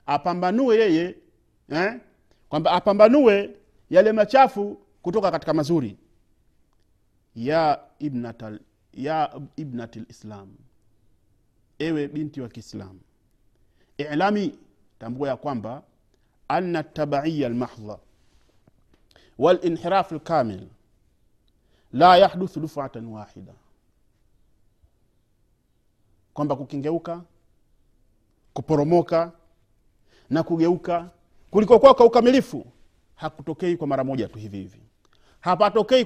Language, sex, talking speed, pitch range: Swahili, male, 75 wpm, 110-170 Hz